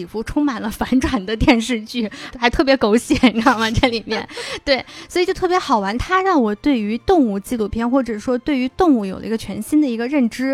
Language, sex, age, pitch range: Chinese, female, 20-39, 220-280 Hz